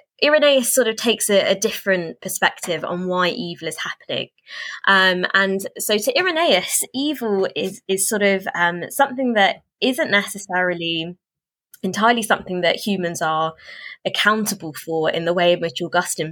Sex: female